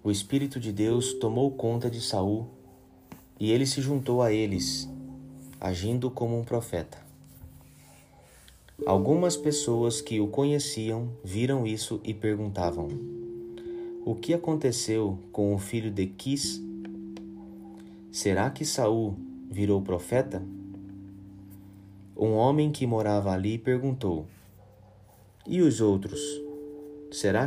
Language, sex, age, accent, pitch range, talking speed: Portuguese, male, 30-49, Brazilian, 95-130 Hz, 110 wpm